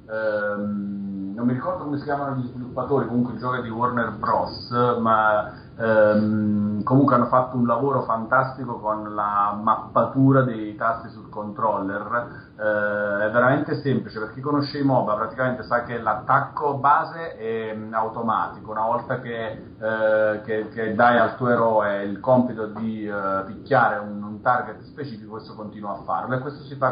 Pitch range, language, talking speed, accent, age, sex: 105-125 Hz, Italian, 160 wpm, native, 40-59, male